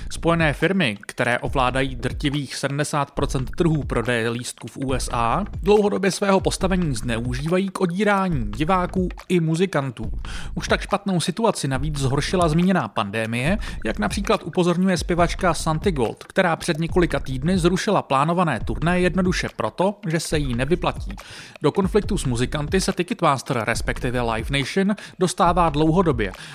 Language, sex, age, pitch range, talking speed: Czech, male, 30-49, 130-180 Hz, 130 wpm